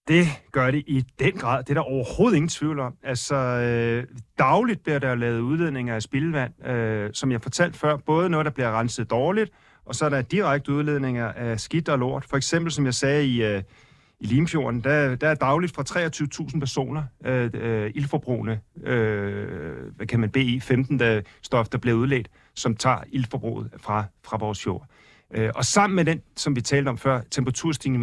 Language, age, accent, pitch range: Danish, 40-59, native, 120-155 Hz